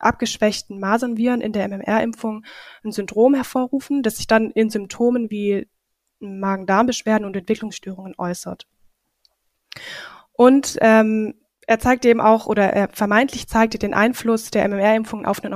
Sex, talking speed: female, 130 wpm